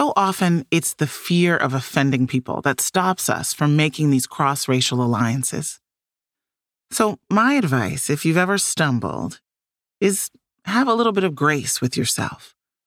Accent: American